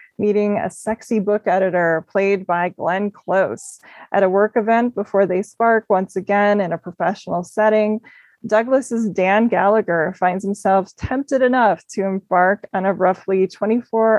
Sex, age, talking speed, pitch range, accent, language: female, 20-39, 150 wpm, 190-215 Hz, American, English